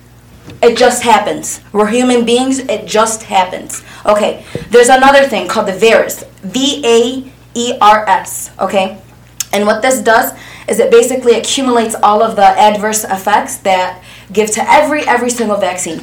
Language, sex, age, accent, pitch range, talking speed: English, female, 20-39, American, 215-275 Hz, 140 wpm